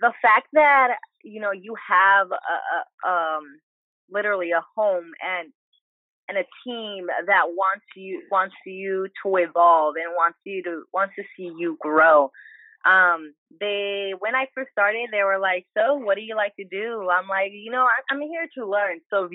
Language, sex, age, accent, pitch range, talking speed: English, female, 20-39, American, 175-220 Hz, 185 wpm